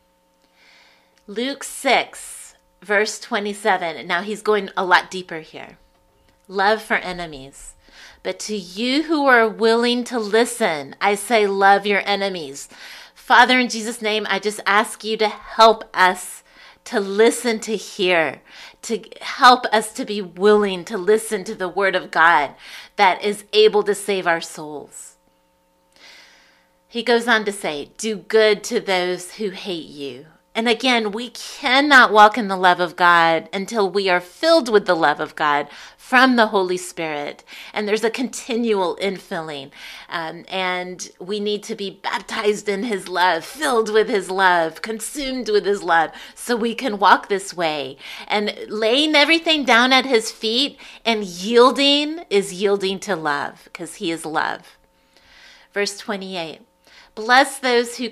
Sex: female